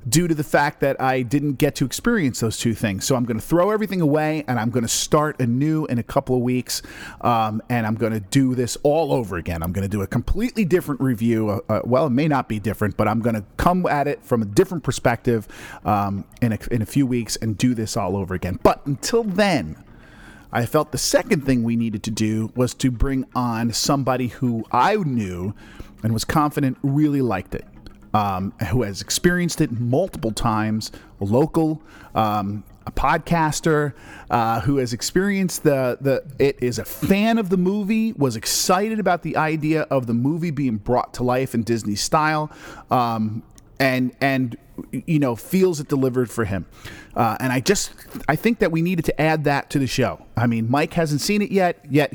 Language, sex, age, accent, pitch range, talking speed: English, male, 40-59, American, 115-155 Hz, 205 wpm